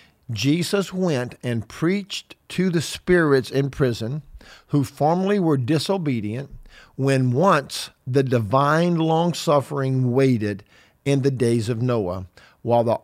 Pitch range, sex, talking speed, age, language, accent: 110-140 Hz, male, 125 wpm, 50-69, English, American